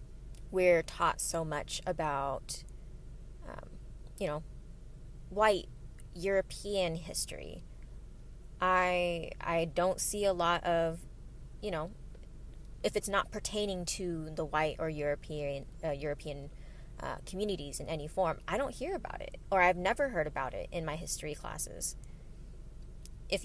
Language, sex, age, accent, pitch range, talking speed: English, female, 20-39, American, 140-180 Hz, 135 wpm